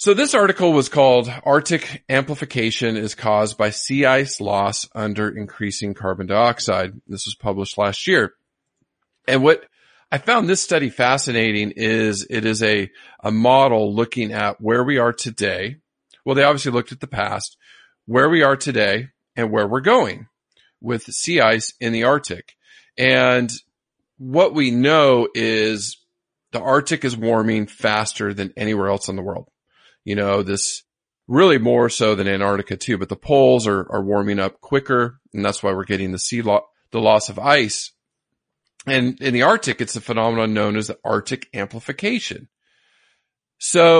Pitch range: 105-135 Hz